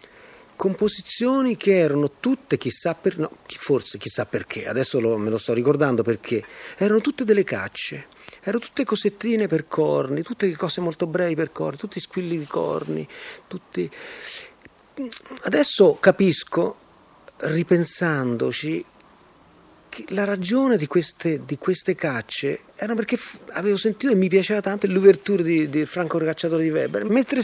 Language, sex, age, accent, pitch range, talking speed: Italian, male, 40-59, native, 150-210 Hz, 140 wpm